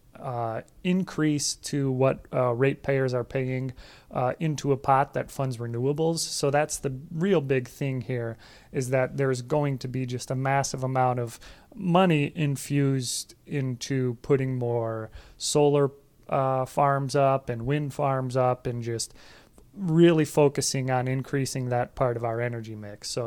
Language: English